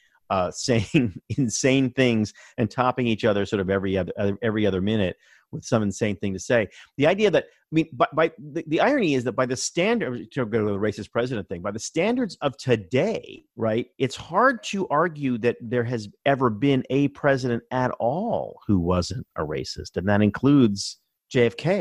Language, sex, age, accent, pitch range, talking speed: English, male, 40-59, American, 100-130 Hz, 195 wpm